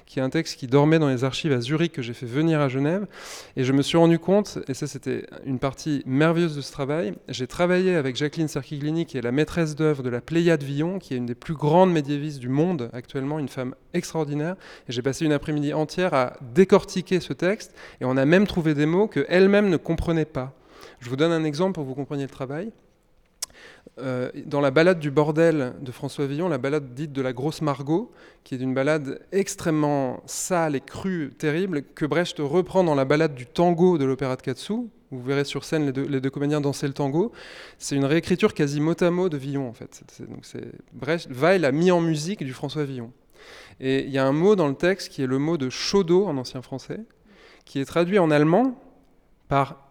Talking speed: 225 wpm